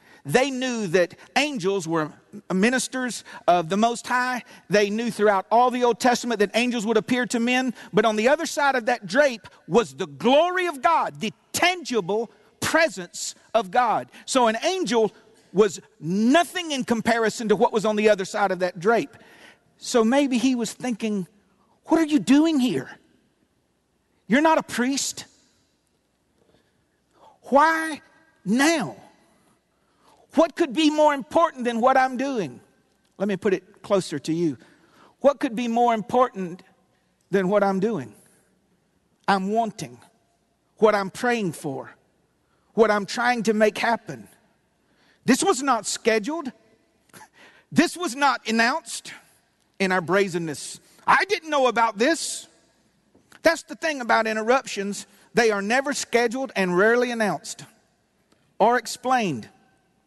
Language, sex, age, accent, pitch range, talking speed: English, male, 50-69, American, 200-265 Hz, 140 wpm